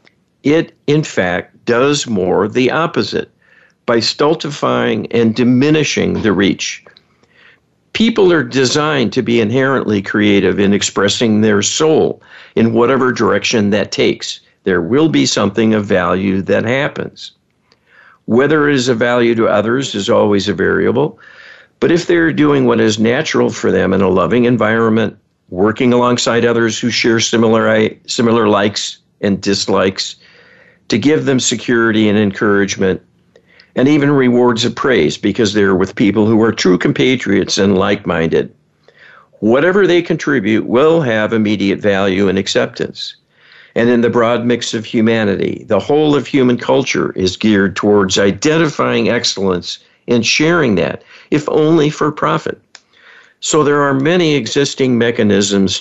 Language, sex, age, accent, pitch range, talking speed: English, male, 60-79, American, 100-135 Hz, 140 wpm